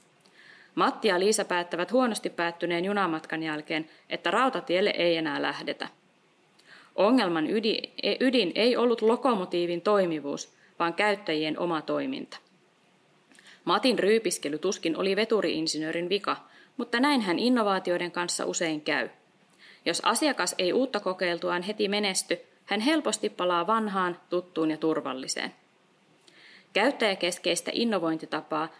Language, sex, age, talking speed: Finnish, female, 30-49, 105 wpm